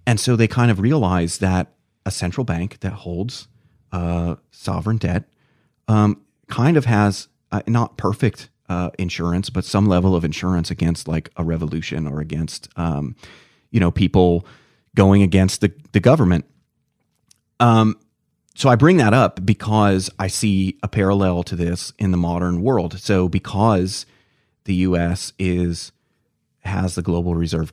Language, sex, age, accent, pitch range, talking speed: English, male, 30-49, American, 85-110 Hz, 155 wpm